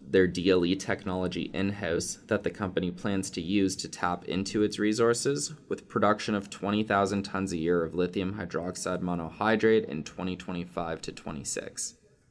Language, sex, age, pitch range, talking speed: English, male, 20-39, 85-105 Hz, 145 wpm